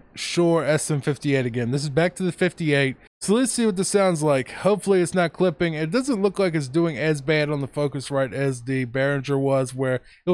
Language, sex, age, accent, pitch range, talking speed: English, male, 20-39, American, 130-165 Hz, 220 wpm